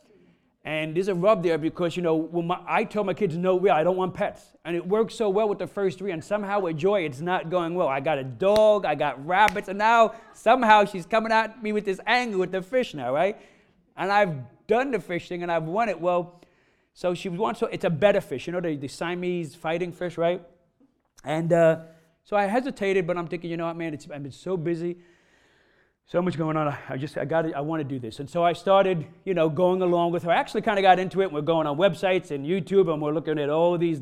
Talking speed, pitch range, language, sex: 250 wpm, 160-195 Hz, English, male